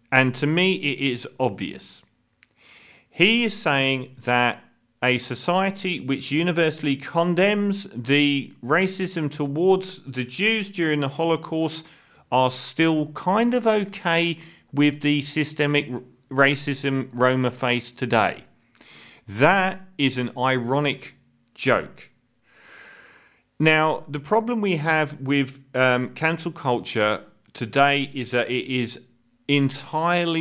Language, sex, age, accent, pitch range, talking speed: English, male, 40-59, British, 120-160 Hz, 110 wpm